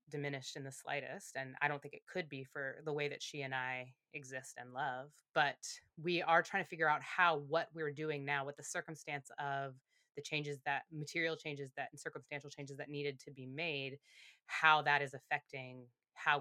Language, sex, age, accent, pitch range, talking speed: English, female, 20-39, American, 145-185 Hz, 205 wpm